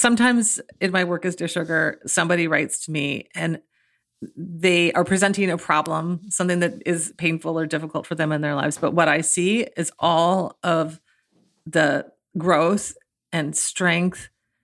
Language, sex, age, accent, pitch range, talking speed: English, female, 40-59, American, 165-195 Hz, 160 wpm